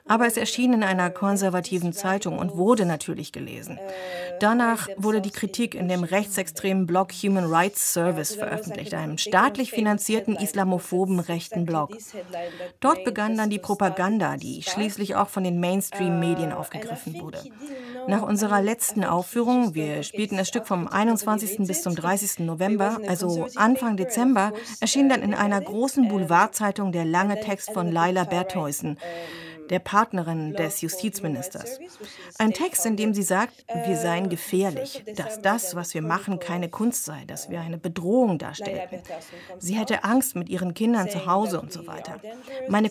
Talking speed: 150 wpm